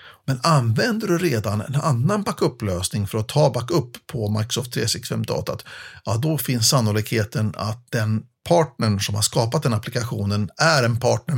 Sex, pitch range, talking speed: male, 110-145 Hz, 150 wpm